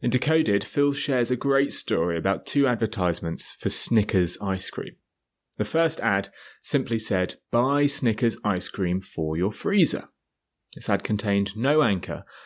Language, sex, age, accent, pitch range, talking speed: English, male, 30-49, British, 95-145 Hz, 150 wpm